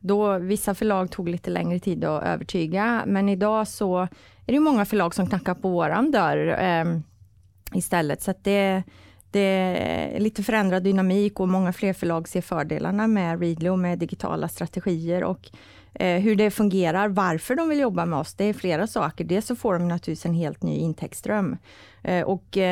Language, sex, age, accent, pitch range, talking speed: Swedish, female, 30-49, native, 170-200 Hz, 175 wpm